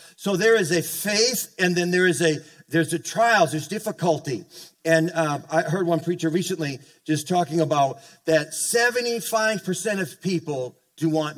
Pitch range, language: 150-175 Hz, English